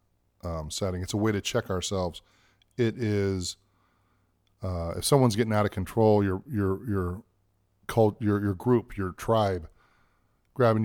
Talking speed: 150 wpm